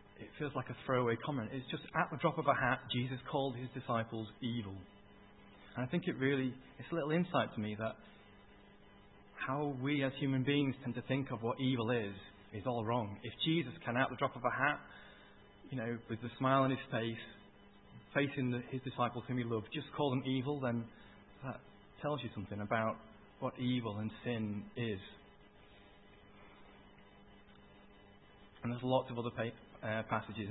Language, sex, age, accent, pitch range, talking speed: English, male, 30-49, British, 100-130 Hz, 180 wpm